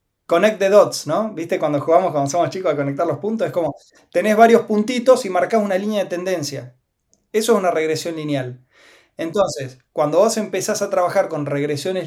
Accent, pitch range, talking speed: Argentinian, 145-205 Hz, 190 wpm